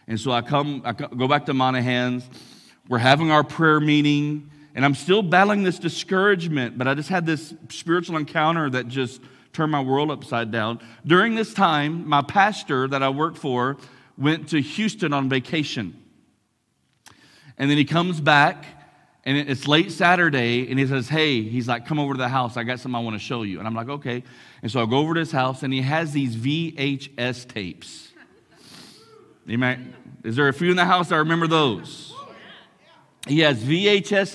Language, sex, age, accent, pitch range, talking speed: English, male, 40-59, American, 125-155 Hz, 190 wpm